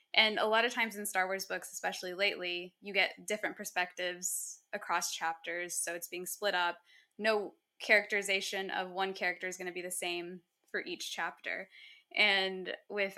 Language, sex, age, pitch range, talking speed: English, female, 10-29, 180-210 Hz, 175 wpm